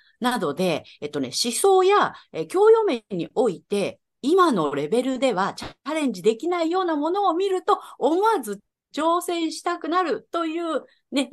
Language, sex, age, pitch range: Japanese, female, 40-59, 185-305 Hz